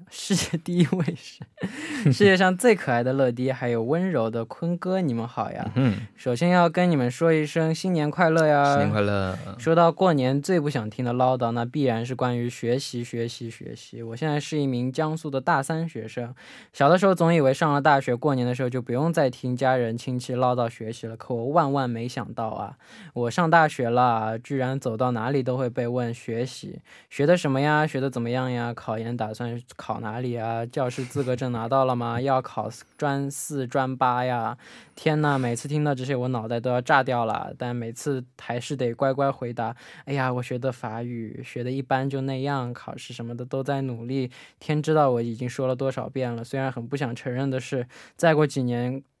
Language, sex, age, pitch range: Korean, male, 10-29, 120-145 Hz